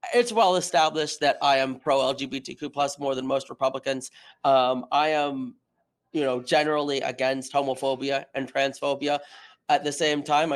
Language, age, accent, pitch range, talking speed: English, 30-49, American, 135-170 Hz, 155 wpm